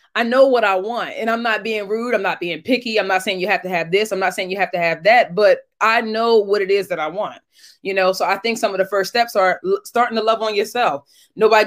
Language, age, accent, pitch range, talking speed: English, 20-39, American, 195-240 Hz, 290 wpm